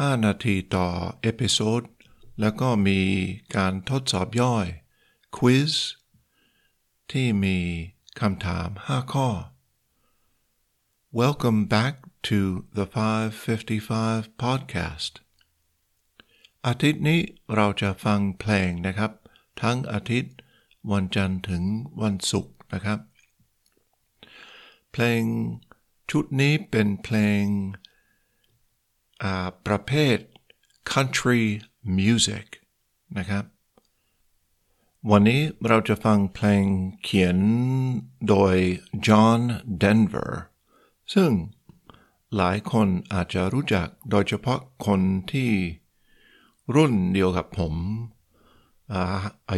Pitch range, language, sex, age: 95-115 Hz, Thai, male, 60-79